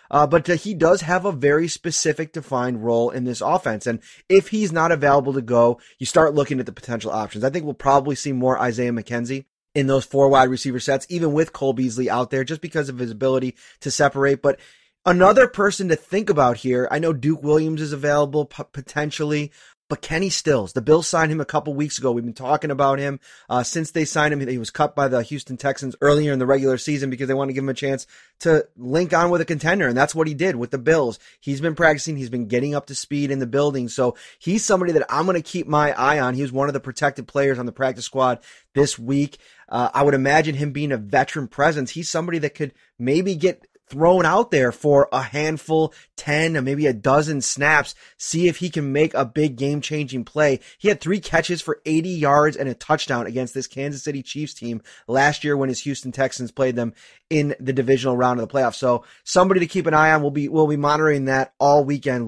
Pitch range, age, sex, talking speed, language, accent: 130-160 Hz, 20-39, male, 235 wpm, English, American